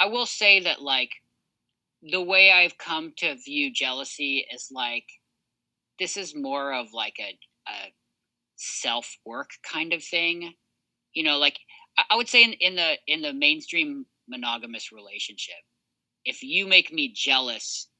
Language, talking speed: English, 150 wpm